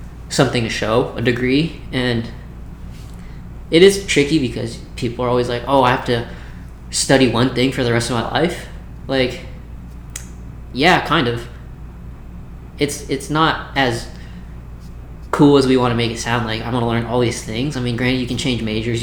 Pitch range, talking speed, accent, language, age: 115-135 Hz, 185 wpm, American, English, 20-39